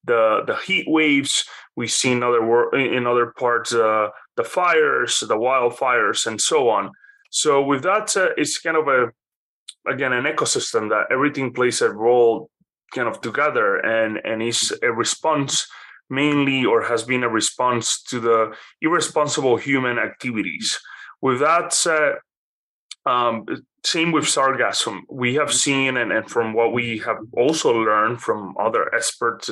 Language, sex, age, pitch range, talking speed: English, male, 30-49, 115-155 Hz, 155 wpm